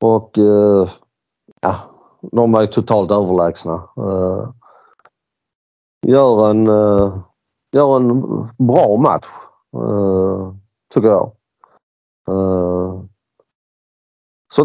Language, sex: Swedish, male